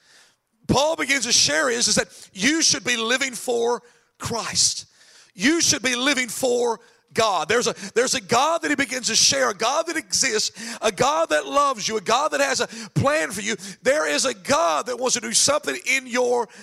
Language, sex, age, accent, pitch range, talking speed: English, male, 40-59, American, 205-270 Hz, 200 wpm